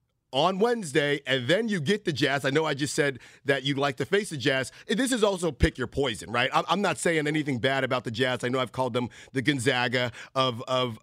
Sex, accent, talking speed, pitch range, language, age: male, American, 240 wpm, 130-185 Hz, English, 40-59